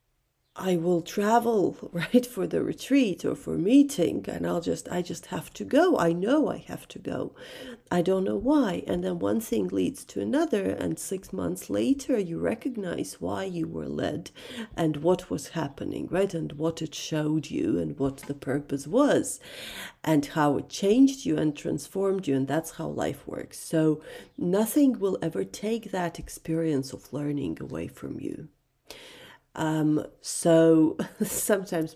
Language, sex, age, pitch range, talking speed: English, female, 40-59, 160-230 Hz, 165 wpm